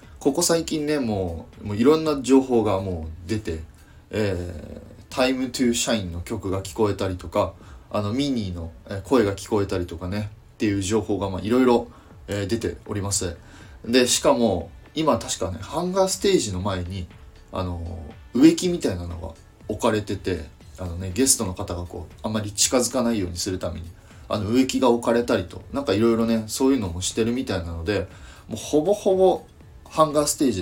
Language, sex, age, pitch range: Japanese, male, 30-49, 90-120 Hz